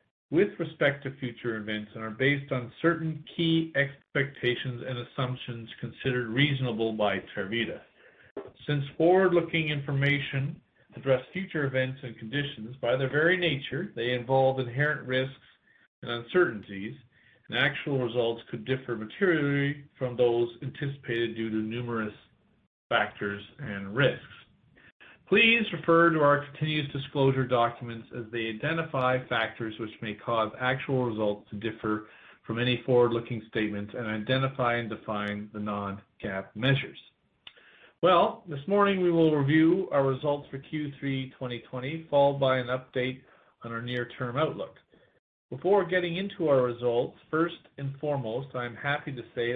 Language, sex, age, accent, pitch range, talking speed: English, male, 40-59, American, 120-145 Hz, 135 wpm